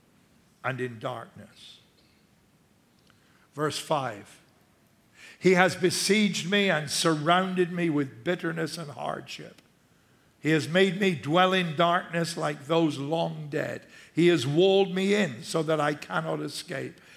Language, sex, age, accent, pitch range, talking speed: English, male, 60-79, American, 150-185 Hz, 130 wpm